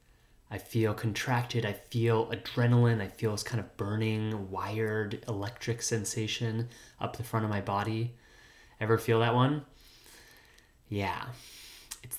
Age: 30-49